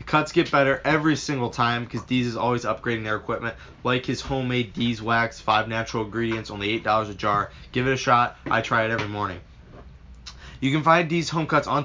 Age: 20-39